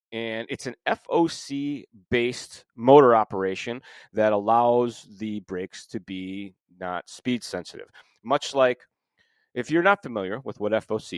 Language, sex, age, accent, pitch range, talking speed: English, male, 30-49, American, 105-130 Hz, 125 wpm